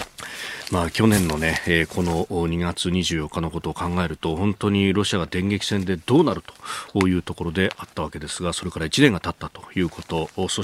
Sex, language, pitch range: male, Japanese, 95-145 Hz